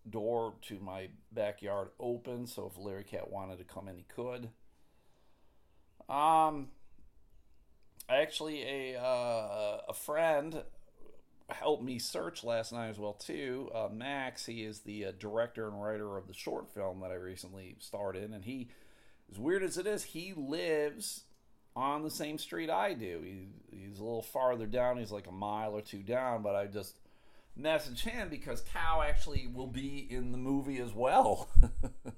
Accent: American